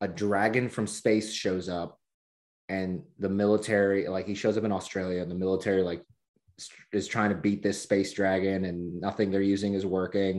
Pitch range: 95-110 Hz